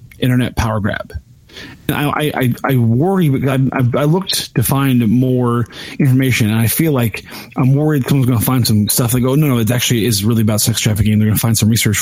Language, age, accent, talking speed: English, 30-49, American, 230 wpm